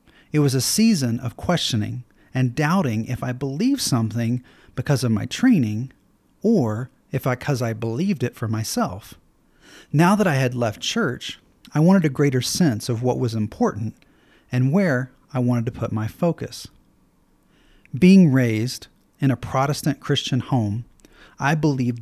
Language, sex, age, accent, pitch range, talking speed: English, male, 40-59, American, 115-150 Hz, 155 wpm